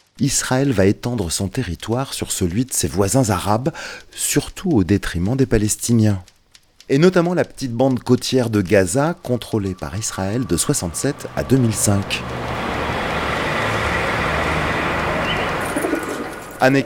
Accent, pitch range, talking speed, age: French, 95-125 Hz, 115 wpm, 30-49